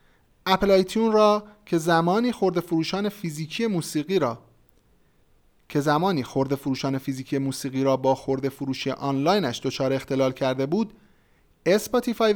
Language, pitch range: Persian, 135-190 Hz